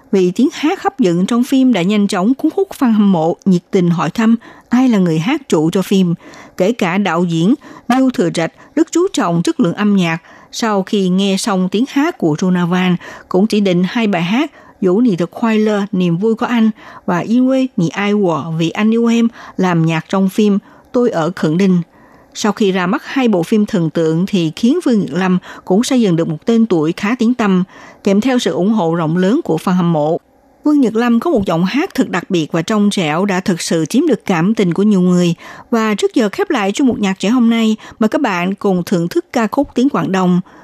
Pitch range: 180-245 Hz